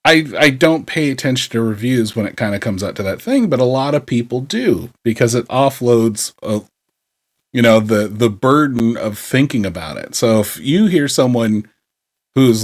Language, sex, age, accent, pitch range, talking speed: English, male, 40-59, American, 115-145 Hz, 195 wpm